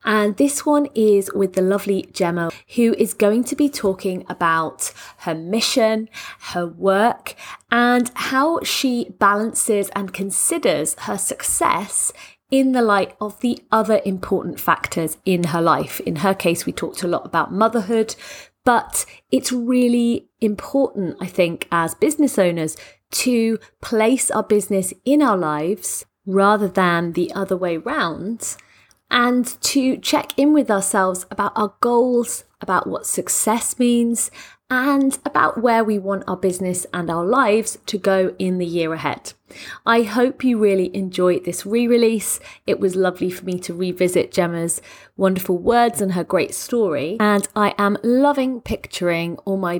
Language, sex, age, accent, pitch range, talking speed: English, female, 30-49, British, 180-235 Hz, 150 wpm